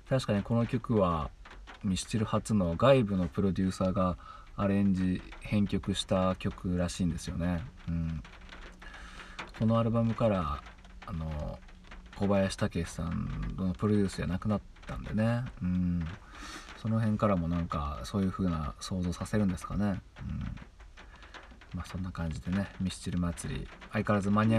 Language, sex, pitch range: Japanese, male, 85-105 Hz